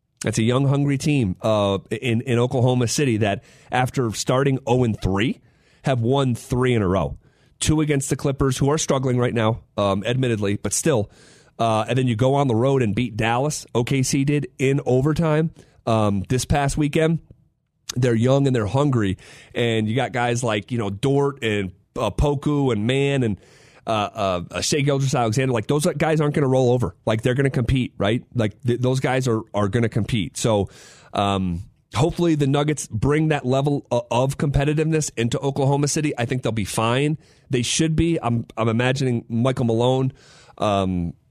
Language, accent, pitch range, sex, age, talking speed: English, American, 115-140 Hz, male, 30-49, 180 wpm